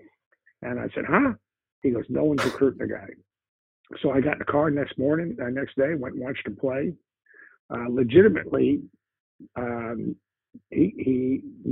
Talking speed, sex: 175 wpm, male